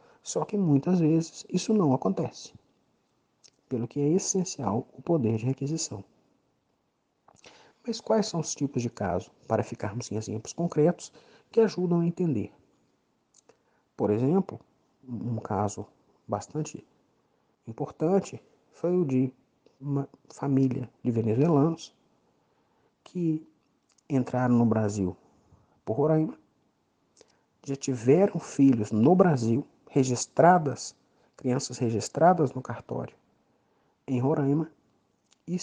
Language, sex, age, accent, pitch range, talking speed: Portuguese, male, 50-69, Brazilian, 125-165 Hz, 105 wpm